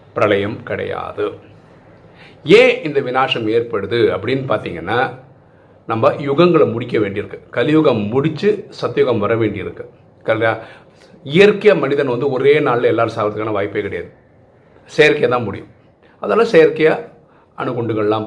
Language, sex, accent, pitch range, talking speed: Tamil, male, native, 105-175 Hz, 110 wpm